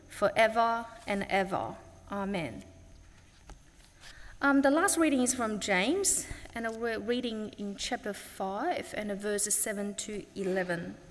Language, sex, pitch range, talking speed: English, female, 205-265 Hz, 120 wpm